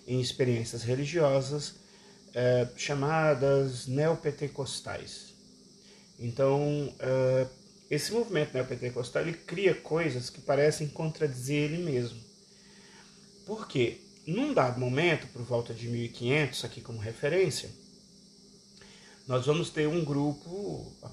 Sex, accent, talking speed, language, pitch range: male, Brazilian, 105 wpm, Portuguese, 130-195 Hz